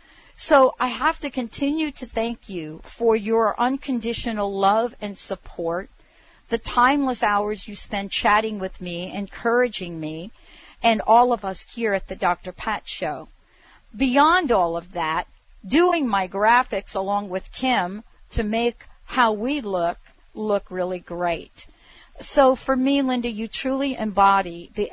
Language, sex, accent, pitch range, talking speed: English, female, American, 185-240 Hz, 145 wpm